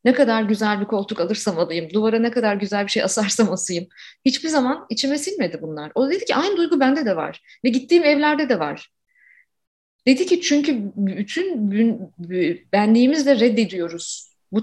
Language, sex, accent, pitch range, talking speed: Turkish, female, native, 195-270 Hz, 165 wpm